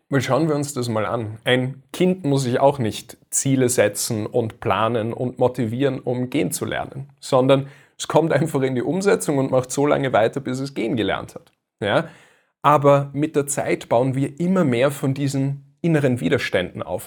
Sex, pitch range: male, 125-150 Hz